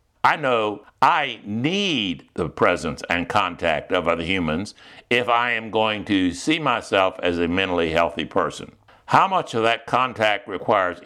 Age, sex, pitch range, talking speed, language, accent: 60-79, male, 95-120 Hz, 155 wpm, English, American